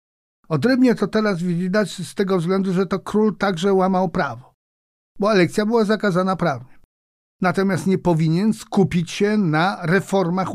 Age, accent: 50-69, native